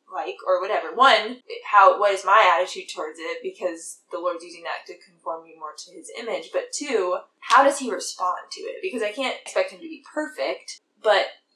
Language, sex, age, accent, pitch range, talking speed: English, female, 10-29, American, 180-270 Hz, 210 wpm